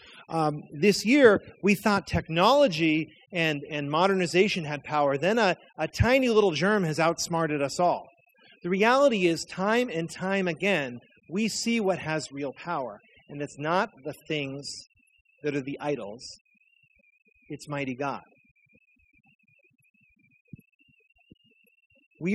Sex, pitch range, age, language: male, 150-200 Hz, 30-49, English